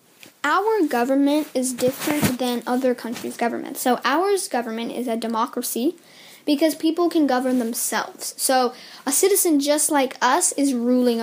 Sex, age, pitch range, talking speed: female, 10-29, 235-290 Hz, 145 wpm